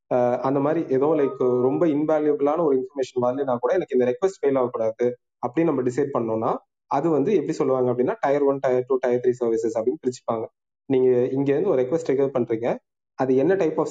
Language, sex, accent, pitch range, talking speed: Tamil, male, native, 125-150 Hz, 190 wpm